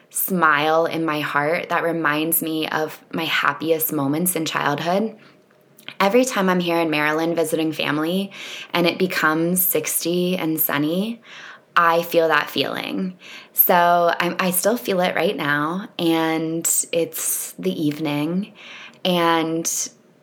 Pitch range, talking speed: 155-180 Hz, 130 wpm